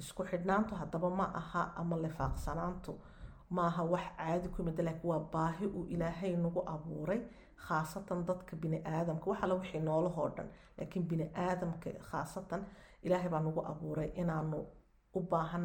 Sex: female